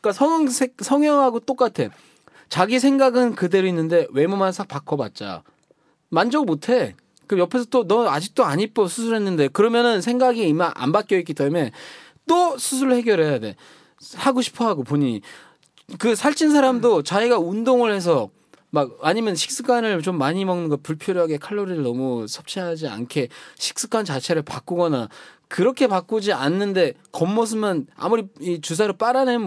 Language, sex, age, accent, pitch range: Korean, male, 20-39, native, 150-230 Hz